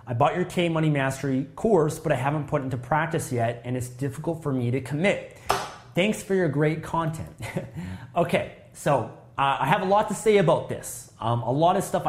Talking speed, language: 215 wpm, English